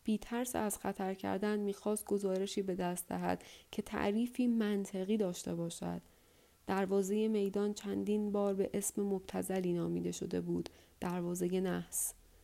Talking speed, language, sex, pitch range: 130 wpm, Persian, female, 180-210 Hz